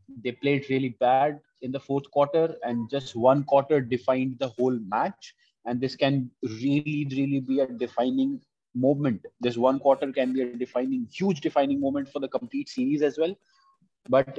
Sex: male